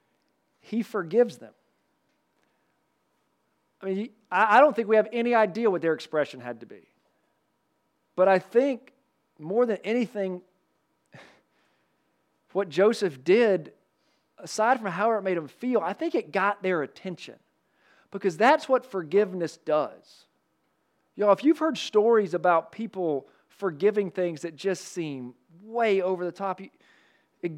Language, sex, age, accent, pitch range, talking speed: English, male, 40-59, American, 175-220 Hz, 140 wpm